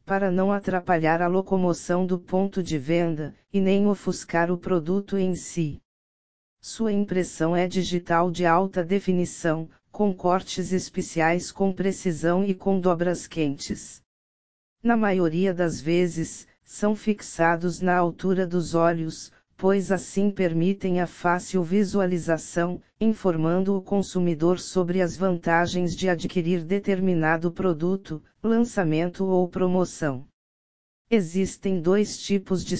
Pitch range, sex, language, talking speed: 170-190 Hz, female, Portuguese, 120 wpm